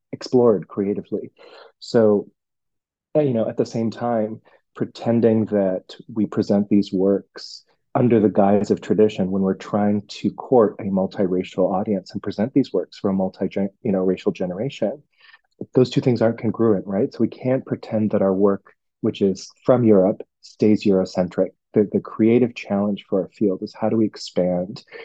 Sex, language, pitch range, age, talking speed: male, English, 100-115 Hz, 30-49, 170 wpm